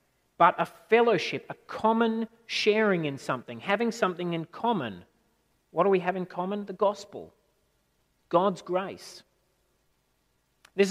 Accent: Australian